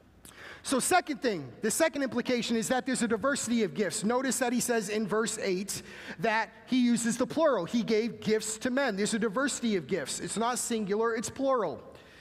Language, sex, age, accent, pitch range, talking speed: English, male, 30-49, American, 185-240 Hz, 195 wpm